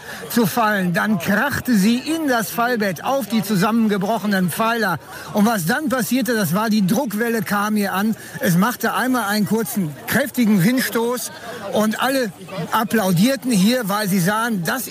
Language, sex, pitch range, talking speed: German, male, 195-235 Hz, 155 wpm